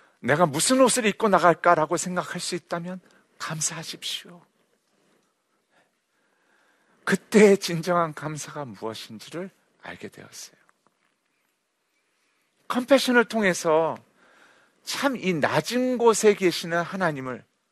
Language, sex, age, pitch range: Korean, male, 40-59, 150-210 Hz